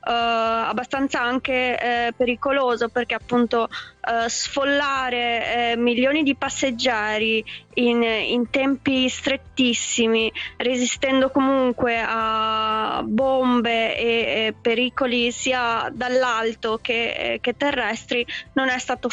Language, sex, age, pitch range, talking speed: Italian, female, 20-39, 235-265 Hz, 100 wpm